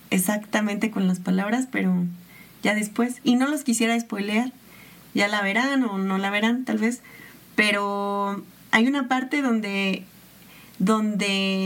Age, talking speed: 30-49, 140 wpm